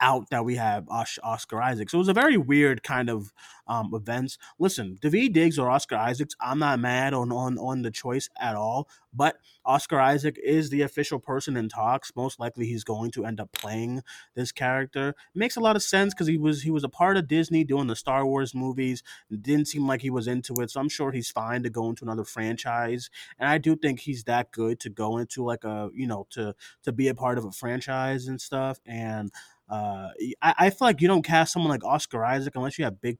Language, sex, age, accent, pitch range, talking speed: English, male, 20-39, American, 115-155 Hz, 235 wpm